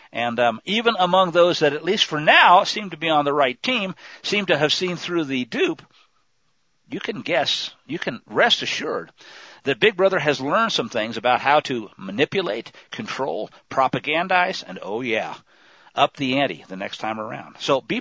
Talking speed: 185 wpm